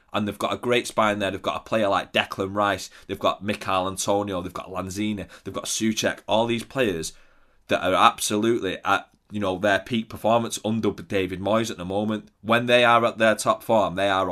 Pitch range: 95-115 Hz